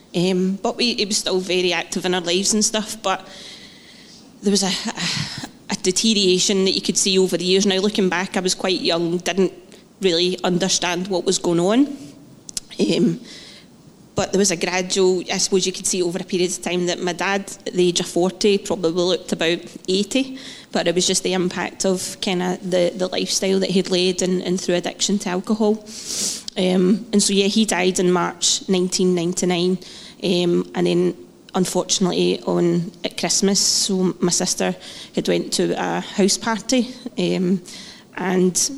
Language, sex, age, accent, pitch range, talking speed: English, female, 30-49, British, 180-215 Hz, 175 wpm